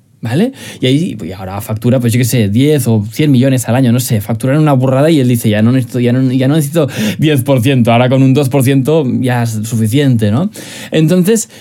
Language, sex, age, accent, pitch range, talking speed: Spanish, male, 20-39, Spanish, 120-160 Hz, 220 wpm